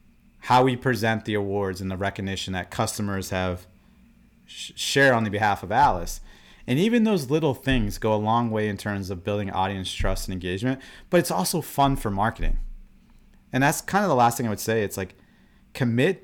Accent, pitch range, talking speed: American, 95-120 Hz, 200 wpm